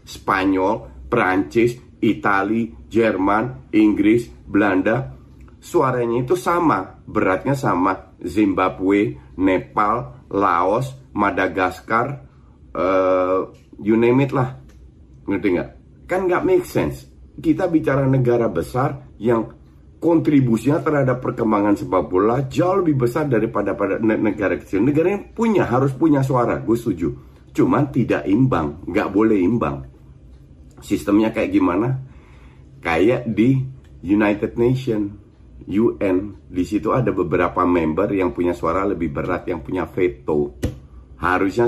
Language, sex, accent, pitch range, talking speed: Indonesian, male, native, 90-125 Hz, 110 wpm